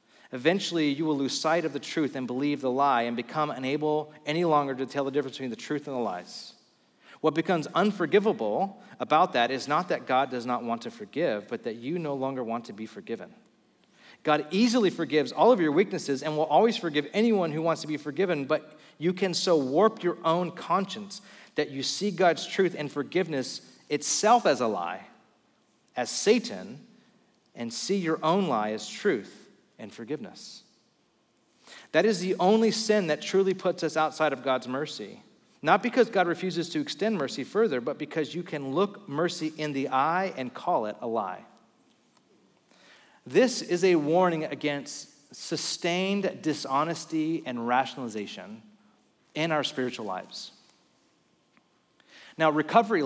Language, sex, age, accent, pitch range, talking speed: English, male, 40-59, American, 135-185 Hz, 165 wpm